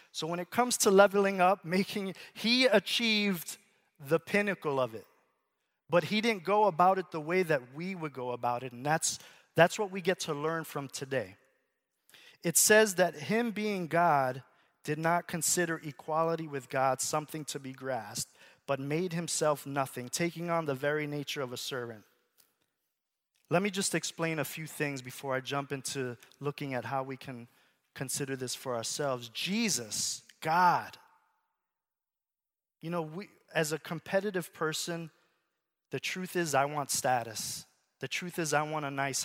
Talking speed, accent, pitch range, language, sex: 165 wpm, American, 135-180 Hz, English, male